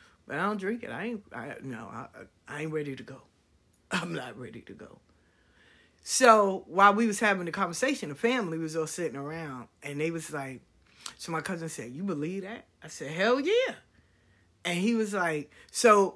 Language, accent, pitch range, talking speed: English, American, 150-225 Hz, 195 wpm